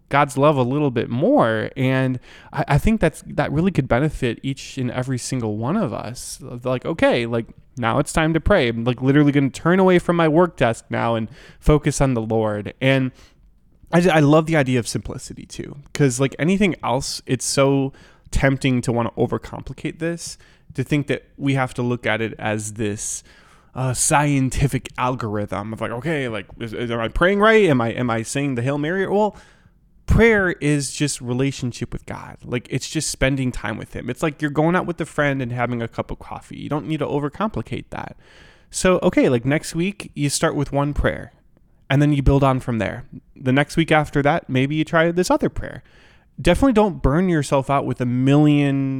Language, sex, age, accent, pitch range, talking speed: English, male, 20-39, American, 125-155 Hz, 205 wpm